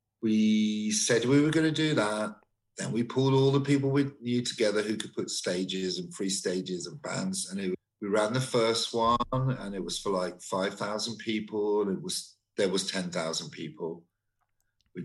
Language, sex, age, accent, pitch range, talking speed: English, male, 50-69, British, 95-125 Hz, 195 wpm